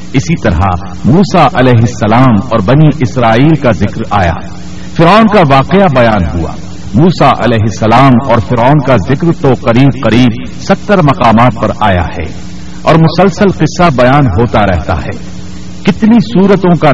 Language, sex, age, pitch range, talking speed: Urdu, male, 60-79, 110-165 Hz, 145 wpm